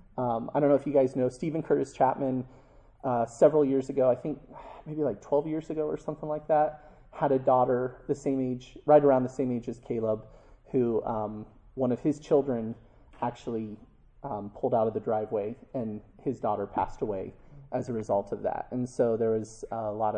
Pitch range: 125-165 Hz